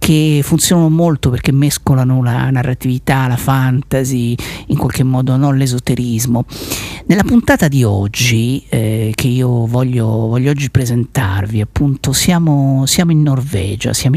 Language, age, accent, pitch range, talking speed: Italian, 50-69, native, 115-140 Hz, 130 wpm